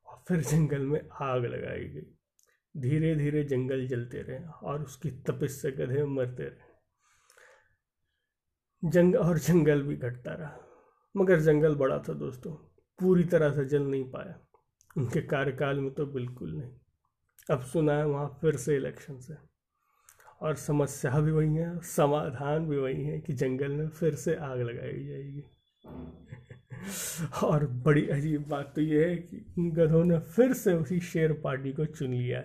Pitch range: 135-160 Hz